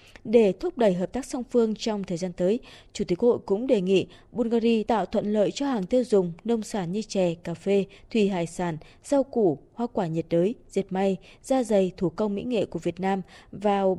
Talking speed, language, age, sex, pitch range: 225 wpm, Vietnamese, 20-39, female, 185-240 Hz